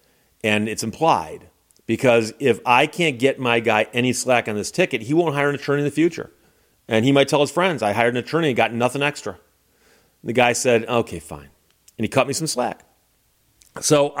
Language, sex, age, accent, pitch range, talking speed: English, male, 40-59, American, 110-145 Hz, 205 wpm